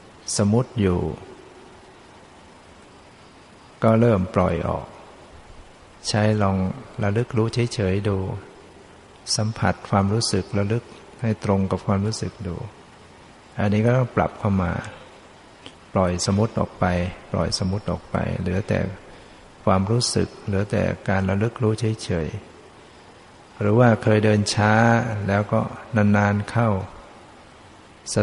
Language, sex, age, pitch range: Thai, male, 60-79, 100-110 Hz